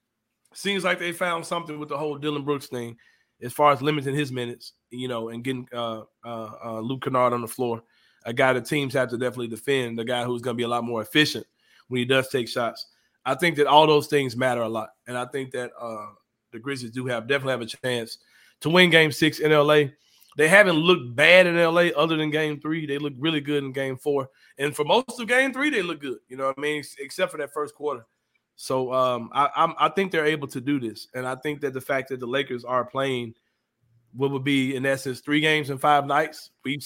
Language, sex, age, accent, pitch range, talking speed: English, male, 30-49, American, 130-155 Hz, 240 wpm